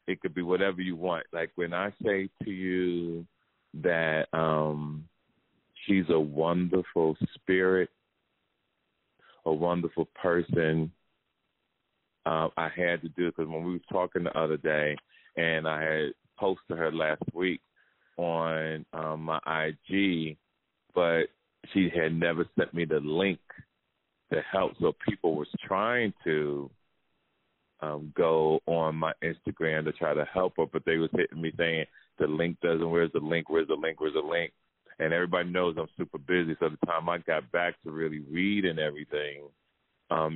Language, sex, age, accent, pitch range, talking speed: English, male, 30-49, American, 80-90 Hz, 155 wpm